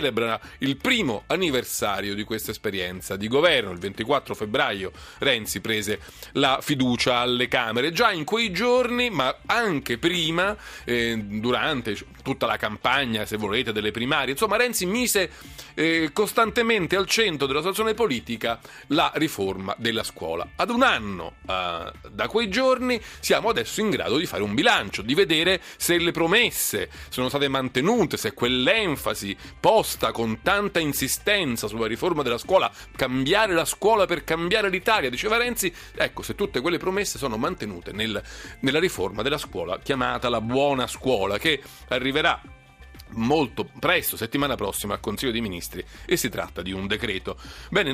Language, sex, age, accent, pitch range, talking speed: Italian, male, 40-59, native, 115-185 Hz, 150 wpm